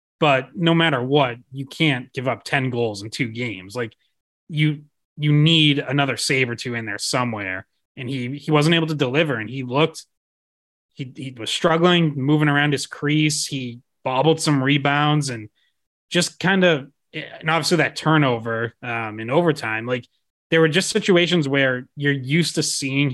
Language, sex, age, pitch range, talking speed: English, male, 20-39, 120-155 Hz, 175 wpm